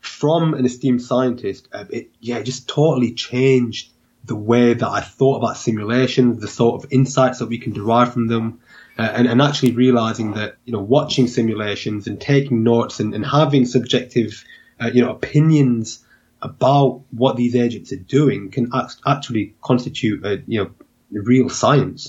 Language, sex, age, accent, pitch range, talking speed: English, male, 20-39, British, 110-130 Hz, 165 wpm